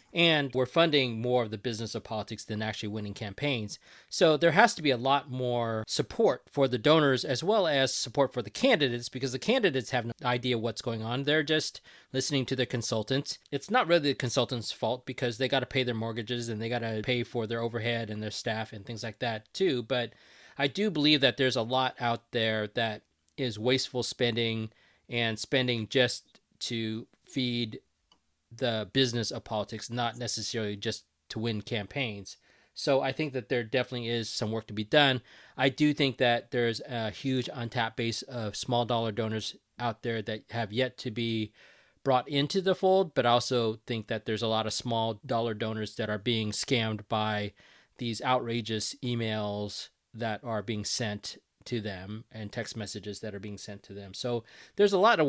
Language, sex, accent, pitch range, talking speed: English, male, American, 110-130 Hz, 195 wpm